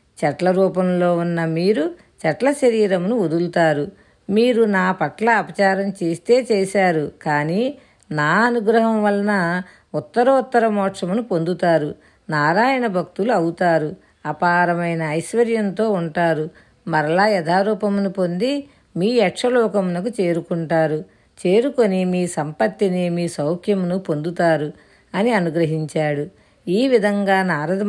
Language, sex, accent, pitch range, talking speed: Telugu, female, native, 170-210 Hz, 95 wpm